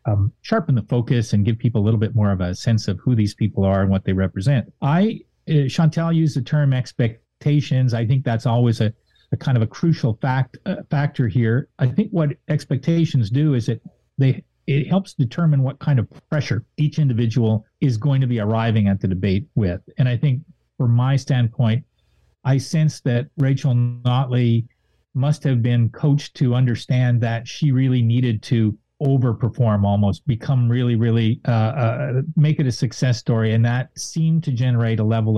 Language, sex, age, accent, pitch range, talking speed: English, male, 40-59, American, 115-140 Hz, 185 wpm